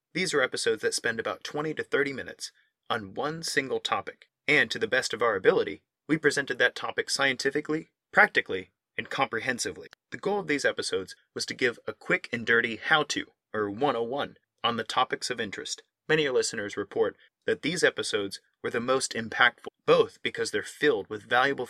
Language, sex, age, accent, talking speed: English, male, 30-49, American, 185 wpm